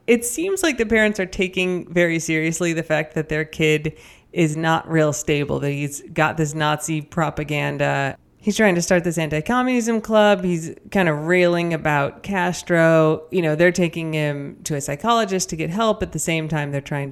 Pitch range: 155-215 Hz